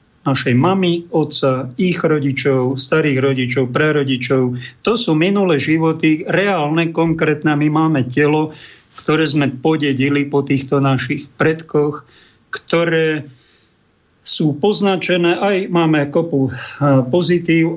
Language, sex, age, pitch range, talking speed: Slovak, male, 50-69, 135-165 Hz, 105 wpm